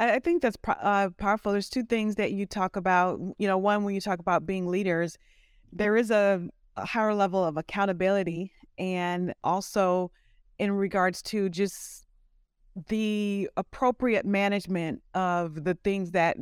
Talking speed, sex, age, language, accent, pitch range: 155 wpm, female, 30-49, English, American, 180-205 Hz